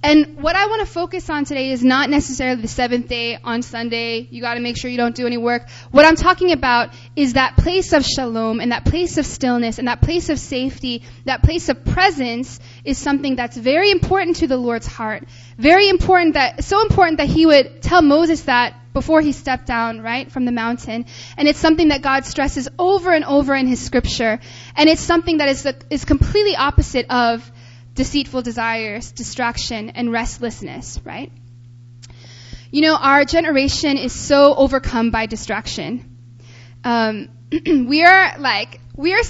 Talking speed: 185 wpm